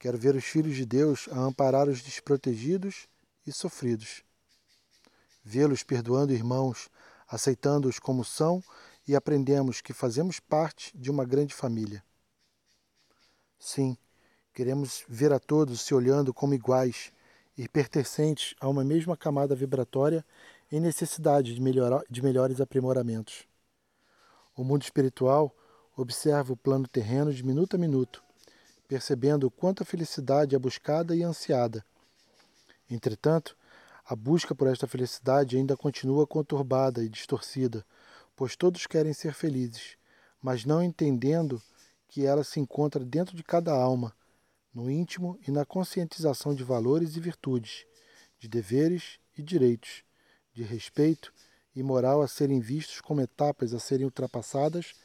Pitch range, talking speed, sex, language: 130-150 Hz, 130 wpm, male, Portuguese